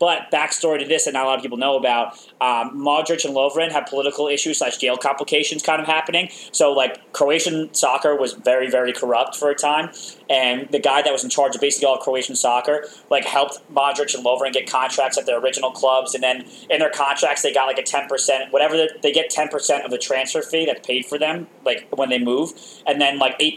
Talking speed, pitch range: 230 wpm, 125-145 Hz